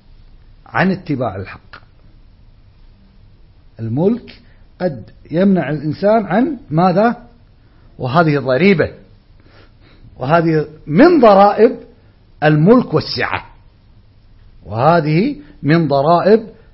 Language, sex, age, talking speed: Arabic, male, 50-69, 70 wpm